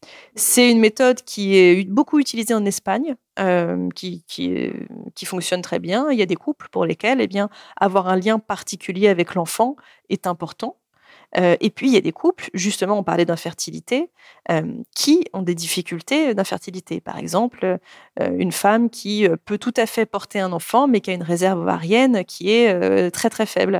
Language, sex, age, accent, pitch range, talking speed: French, female, 30-49, French, 175-220 Hz, 190 wpm